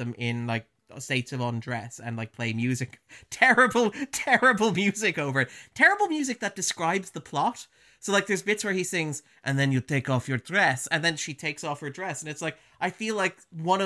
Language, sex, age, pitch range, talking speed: English, male, 30-49, 140-195 Hz, 210 wpm